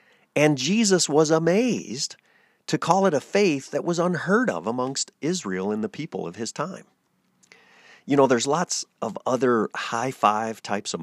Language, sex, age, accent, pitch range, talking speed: English, male, 50-69, American, 110-160 Hz, 170 wpm